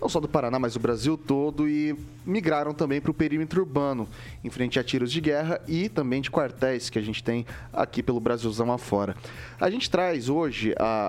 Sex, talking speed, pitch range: male, 205 wpm, 110-140 Hz